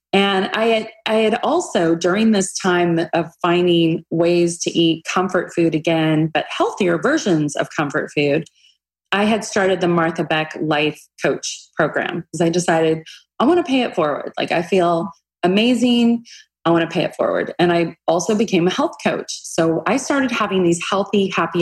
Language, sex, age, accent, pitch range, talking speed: English, female, 30-49, American, 160-200 Hz, 180 wpm